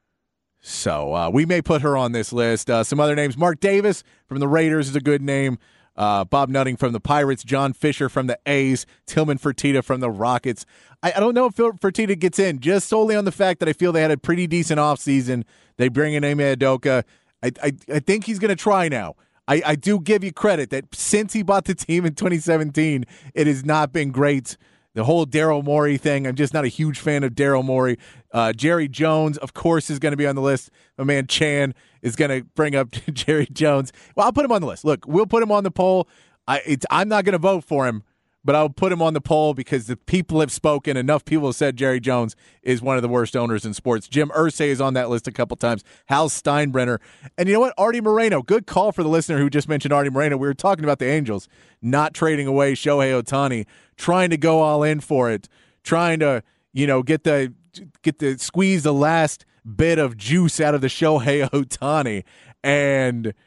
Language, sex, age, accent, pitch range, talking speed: English, male, 30-49, American, 130-165 Hz, 230 wpm